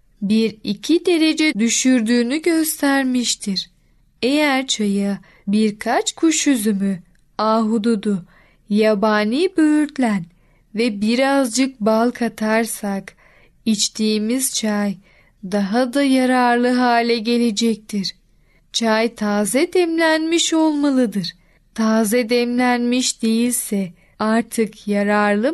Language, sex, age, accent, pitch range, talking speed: Turkish, female, 10-29, native, 210-265 Hz, 80 wpm